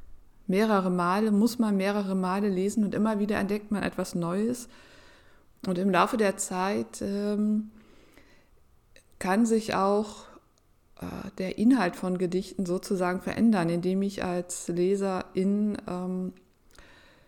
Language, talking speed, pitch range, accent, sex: German, 125 wpm, 185-220 Hz, German, female